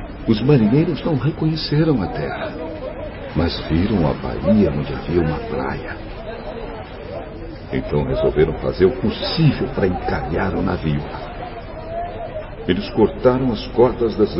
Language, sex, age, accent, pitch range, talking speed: Portuguese, male, 60-79, Brazilian, 75-115 Hz, 115 wpm